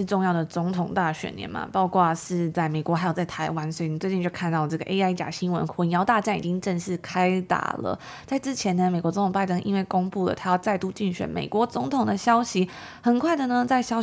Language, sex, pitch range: Chinese, female, 170-195 Hz